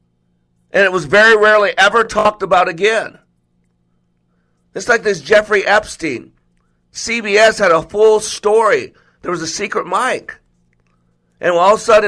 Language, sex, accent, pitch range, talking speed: English, male, American, 150-215 Hz, 145 wpm